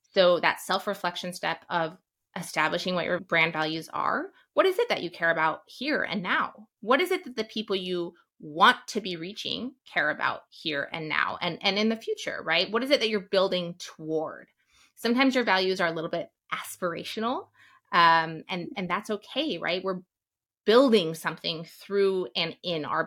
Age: 20-39